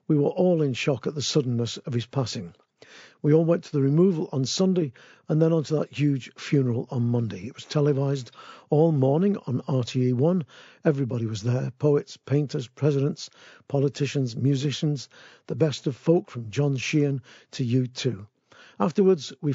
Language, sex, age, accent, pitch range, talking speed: English, male, 50-69, British, 130-160 Hz, 165 wpm